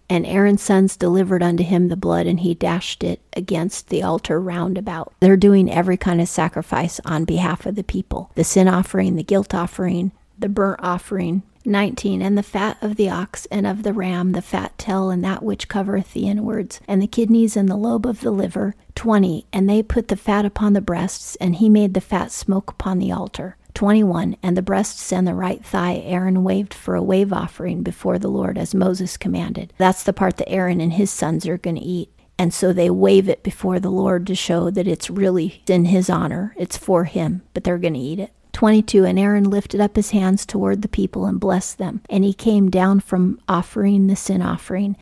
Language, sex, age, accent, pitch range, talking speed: English, female, 40-59, American, 180-200 Hz, 220 wpm